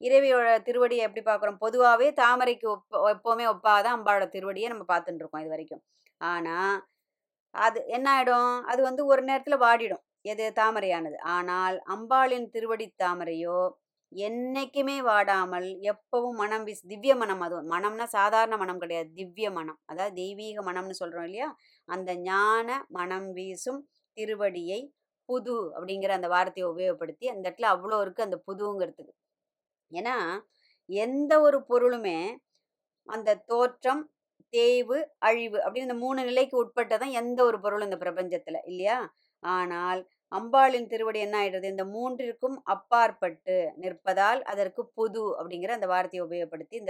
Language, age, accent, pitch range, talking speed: Tamil, 20-39, native, 185-245 Hz, 130 wpm